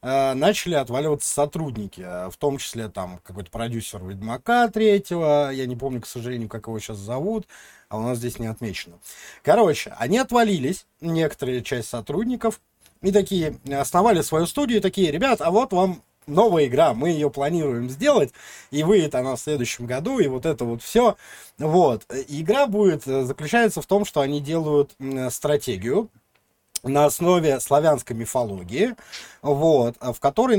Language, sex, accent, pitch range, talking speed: Russian, male, native, 120-185 Hz, 150 wpm